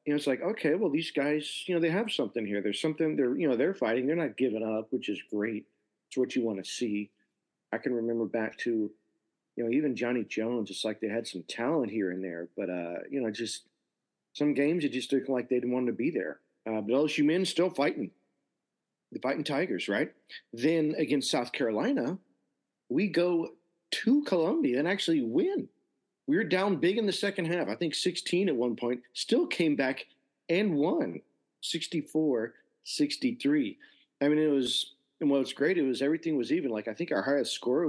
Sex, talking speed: male, 205 wpm